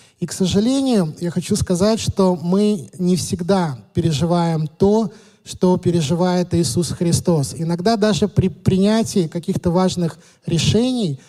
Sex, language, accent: male, Russian, native